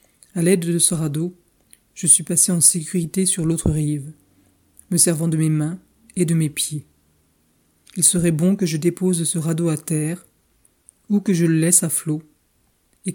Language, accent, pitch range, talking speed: French, French, 155-180 Hz, 185 wpm